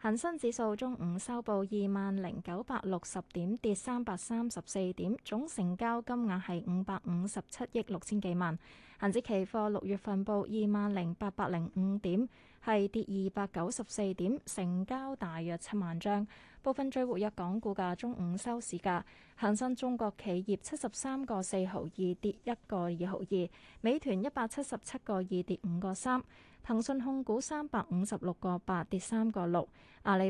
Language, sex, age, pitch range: Chinese, female, 20-39, 185-235 Hz